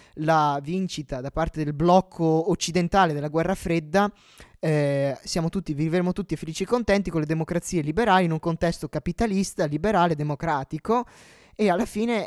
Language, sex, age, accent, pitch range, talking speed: Italian, male, 20-39, native, 150-185 Hz, 150 wpm